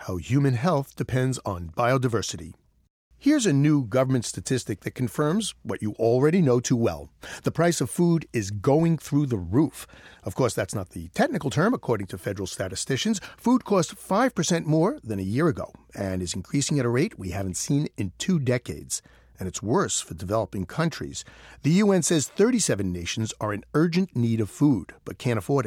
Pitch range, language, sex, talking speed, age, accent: 105-155 Hz, English, male, 185 wpm, 50-69, American